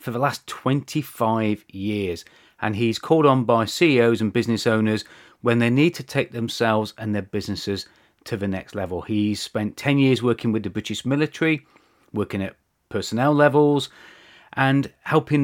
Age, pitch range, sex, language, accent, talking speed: 30-49, 105-130 Hz, male, English, British, 165 wpm